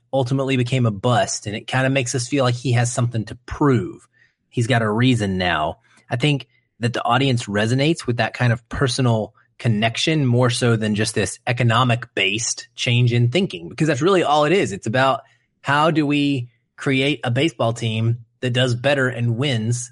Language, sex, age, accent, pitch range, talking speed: English, male, 30-49, American, 115-140 Hz, 195 wpm